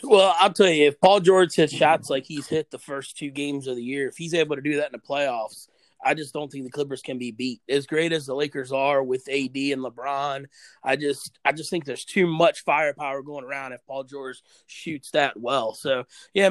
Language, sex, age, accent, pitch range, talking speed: English, male, 30-49, American, 145-175 Hz, 240 wpm